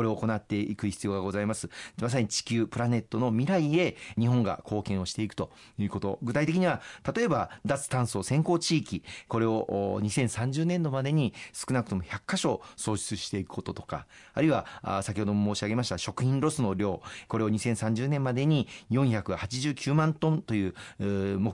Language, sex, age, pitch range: Japanese, male, 40-59, 100-130 Hz